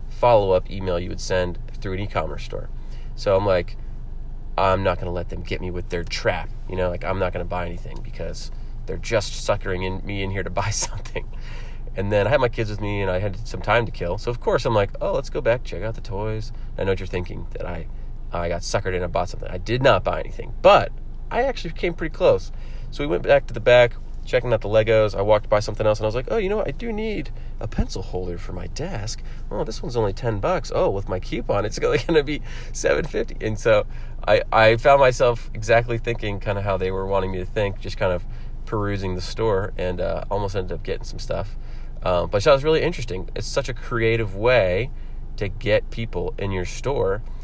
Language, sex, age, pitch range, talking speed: English, male, 30-49, 95-120 Hz, 240 wpm